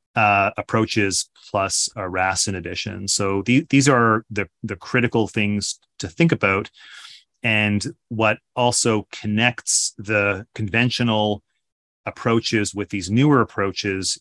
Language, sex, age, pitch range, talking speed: English, male, 30-49, 95-110 Hz, 120 wpm